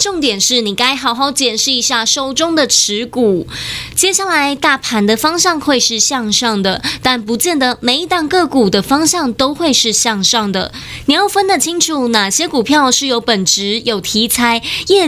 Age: 20-39